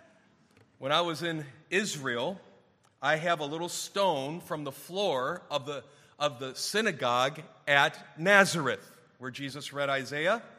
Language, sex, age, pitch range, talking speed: English, male, 40-59, 130-165 Hz, 135 wpm